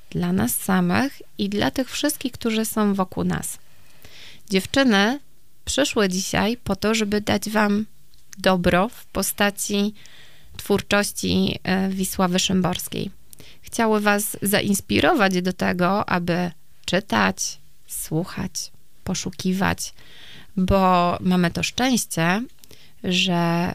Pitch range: 180-215 Hz